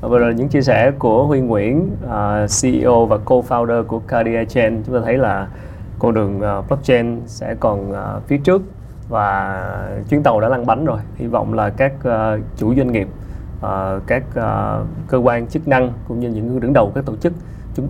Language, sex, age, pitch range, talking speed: Vietnamese, male, 20-39, 110-135 Hz, 180 wpm